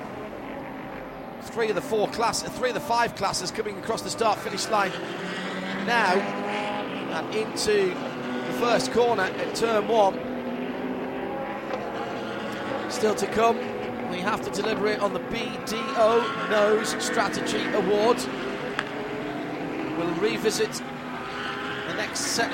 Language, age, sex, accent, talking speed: English, 40-59, male, British, 115 wpm